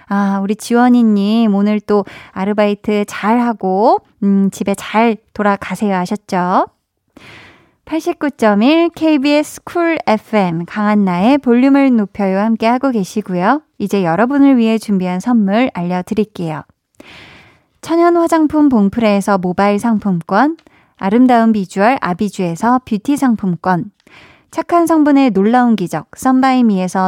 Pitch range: 195-260 Hz